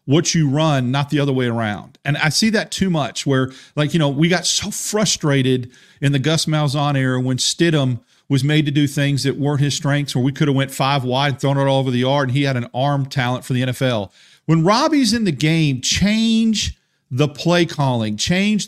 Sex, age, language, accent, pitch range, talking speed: male, 40-59, English, American, 135-170 Hz, 225 wpm